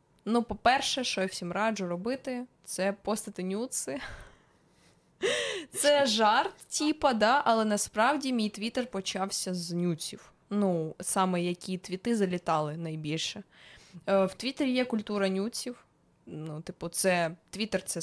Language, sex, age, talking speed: Ukrainian, female, 20-39, 125 wpm